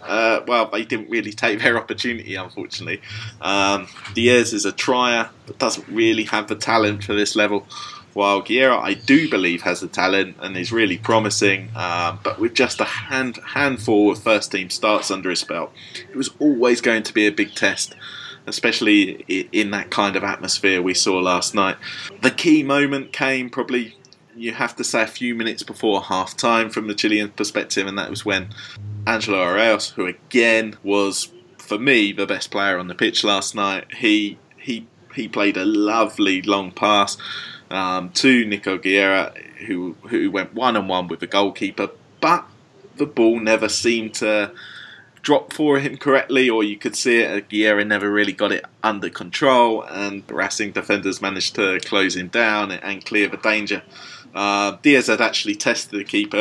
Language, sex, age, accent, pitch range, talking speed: English, male, 20-39, British, 100-125 Hz, 180 wpm